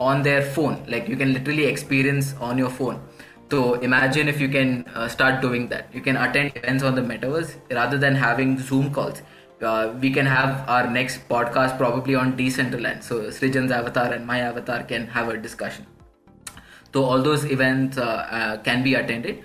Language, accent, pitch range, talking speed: Hindi, native, 125-140 Hz, 190 wpm